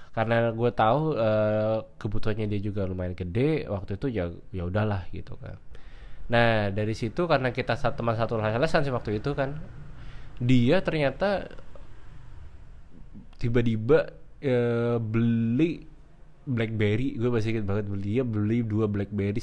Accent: native